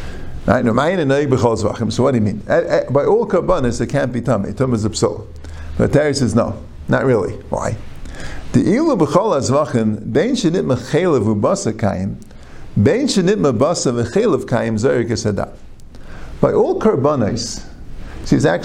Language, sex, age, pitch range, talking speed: English, male, 50-69, 110-150 Hz, 85 wpm